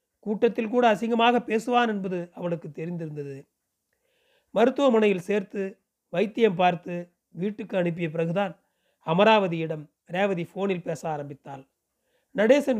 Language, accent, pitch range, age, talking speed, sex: Tamil, native, 170-220 Hz, 40-59, 95 wpm, male